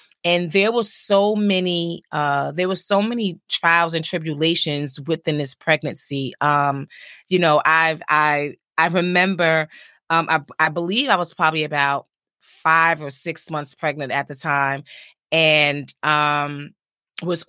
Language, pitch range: English, 150-180 Hz